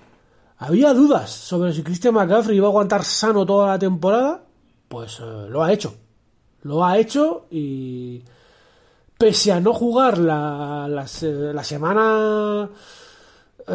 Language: Spanish